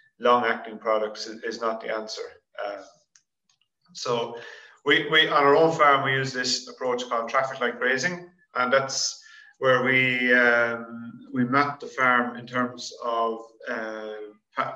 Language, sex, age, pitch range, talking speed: English, male, 30-49, 115-140 Hz, 140 wpm